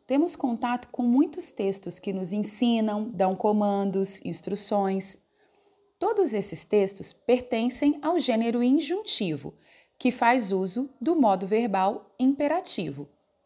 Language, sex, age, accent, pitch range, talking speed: Portuguese, female, 30-49, Brazilian, 195-265 Hz, 110 wpm